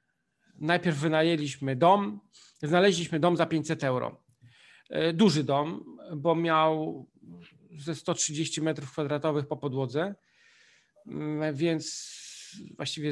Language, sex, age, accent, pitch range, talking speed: Polish, male, 40-59, native, 145-170 Hz, 90 wpm